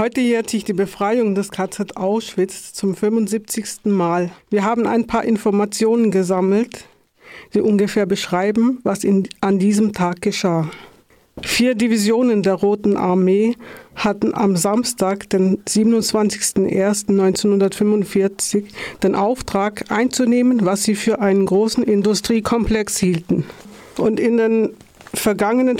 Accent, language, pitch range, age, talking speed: German, German, 195-220 Hz, 50-69, 115 wpm